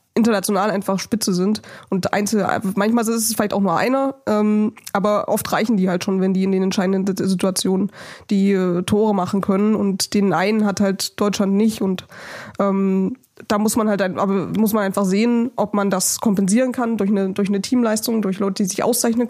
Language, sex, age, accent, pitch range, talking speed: German, female, 20-39, German, 195-225 Hz, 200 wpm